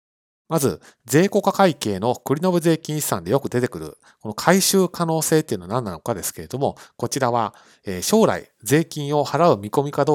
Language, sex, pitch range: Japanese, male, 105-155 Hz